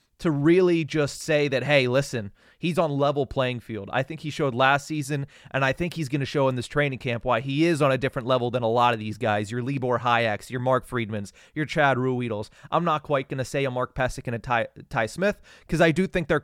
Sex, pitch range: male, 120-155 Hz